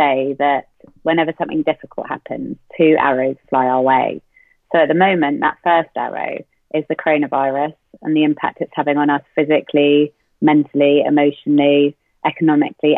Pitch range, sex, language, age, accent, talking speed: 140-155 Hz, female, English, 30-49, British, 150 wpm